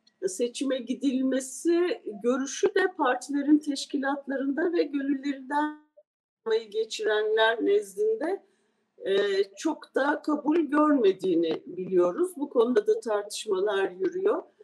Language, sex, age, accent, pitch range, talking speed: Turkish, female, 40-59, native, 230-375 Hz, 80 wpm